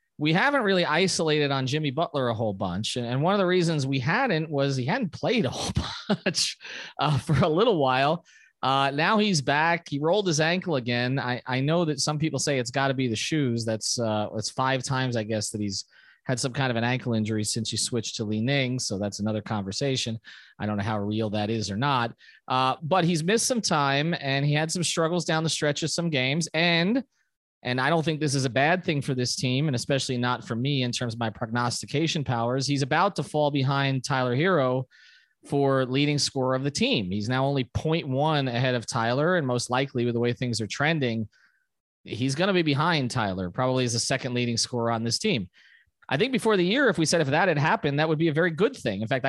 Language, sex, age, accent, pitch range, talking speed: English, male, 30-49, American, 120-160 Hz, 235 wpm